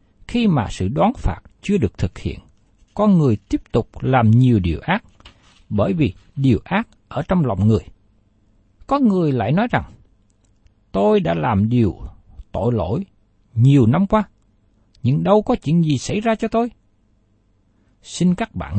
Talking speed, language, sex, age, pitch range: 165 wpm, Vietnamese, male, 60-79, 100-160 Hz